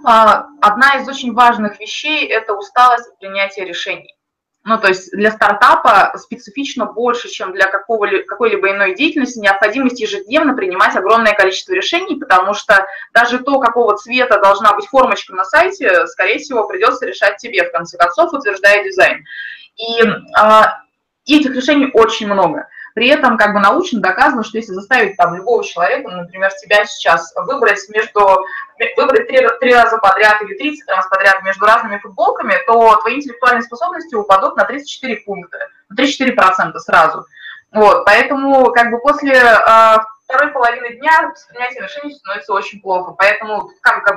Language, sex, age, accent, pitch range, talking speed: Russian, female, 20-39, native, 195-260 Hz, 150 wpm